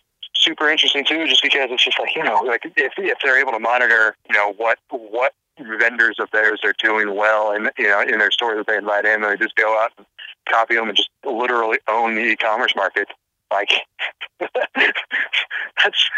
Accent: American